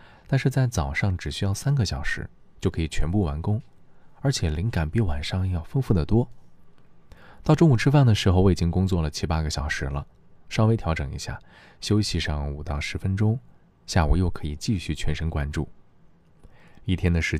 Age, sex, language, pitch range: 20-39, male, Chinese, 75-105 Hz